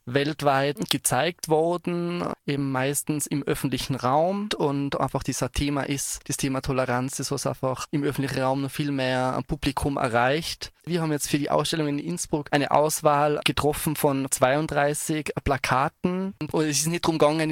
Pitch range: 130-150 Hz